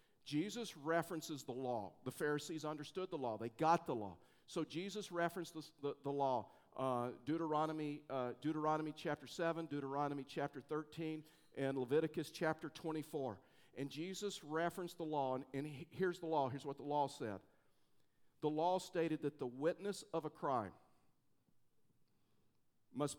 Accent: American